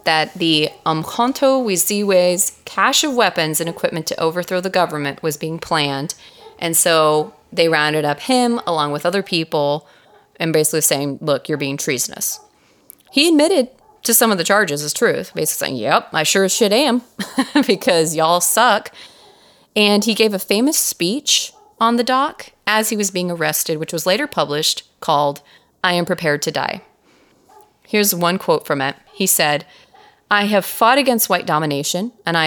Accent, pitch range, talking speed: American, 160-220 Hz, 170 wpm